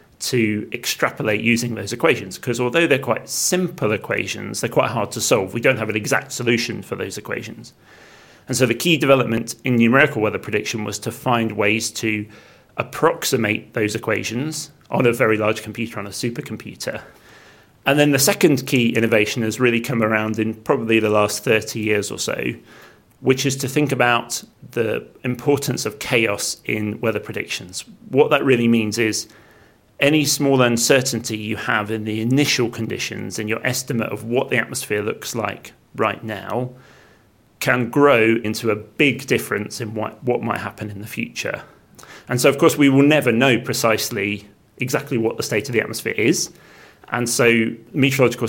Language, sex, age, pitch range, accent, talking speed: English, male, 30-49, 110-130 Hz, British, 170 wpm